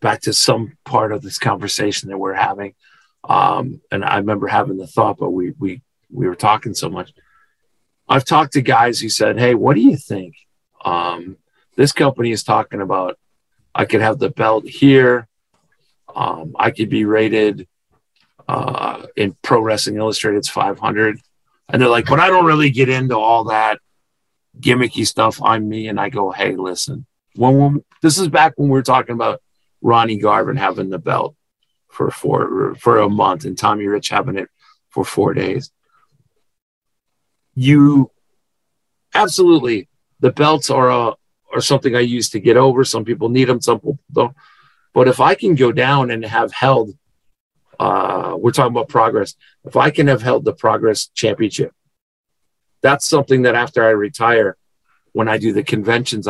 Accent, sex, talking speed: American, male, 170 wpm